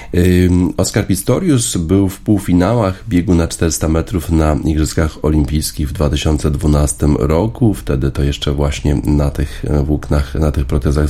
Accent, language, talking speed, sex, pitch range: native, Polish, 135 wpm, male, 75-80 Hz